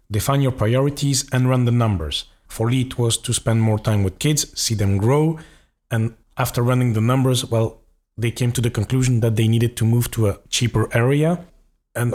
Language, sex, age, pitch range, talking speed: English, male, 40-59, 110-130 Hz, 205 wpm